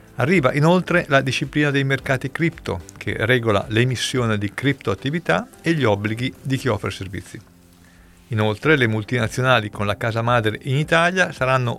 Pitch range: 105-140 Hz